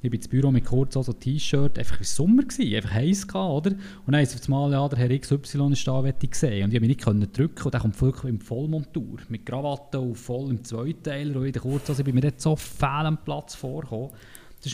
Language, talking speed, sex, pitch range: German, 225 wpm, male, 120-150 Hz